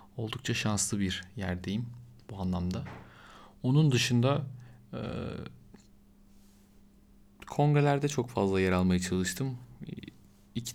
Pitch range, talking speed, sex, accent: 95-110 Hz, 90 wpm, male, native